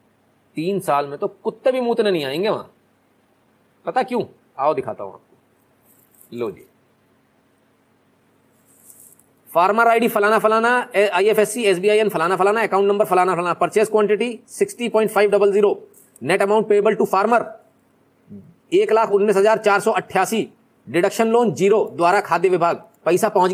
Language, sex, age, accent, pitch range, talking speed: Hindi, male, 30-49, native, 205-245 Hz, 90 wpm